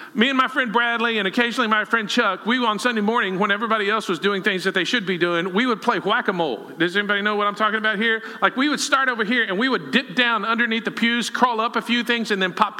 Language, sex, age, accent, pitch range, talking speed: English, male, 50-69, American, 195-240 Hz, 275 wpm